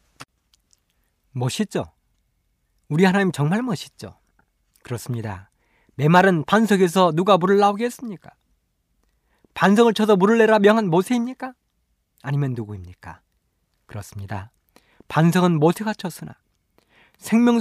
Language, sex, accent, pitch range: Korean, male, native, 120-200 Hz